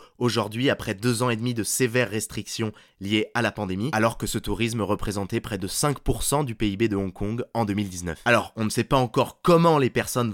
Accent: French